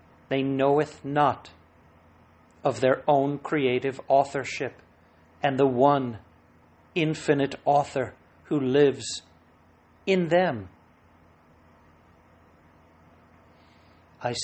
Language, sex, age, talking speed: English, male, 60-79, 75 wpm